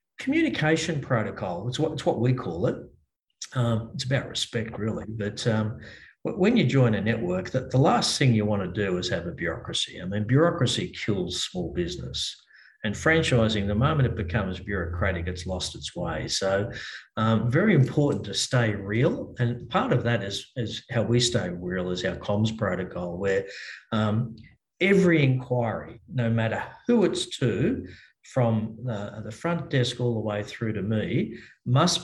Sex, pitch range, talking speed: male, 105-135 Hz, 170 wpm